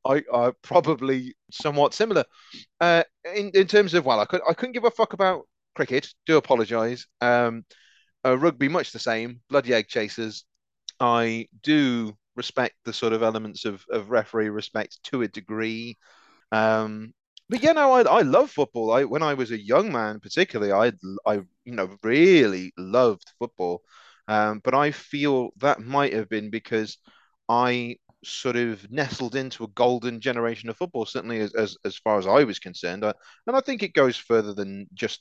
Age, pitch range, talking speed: 30-49, 105-135 Hz, 180 wpm